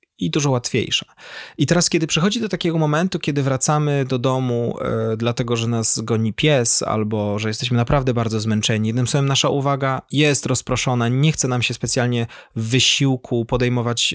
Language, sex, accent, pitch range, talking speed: Polish, male, native, 115-140 Hz, 170 wpm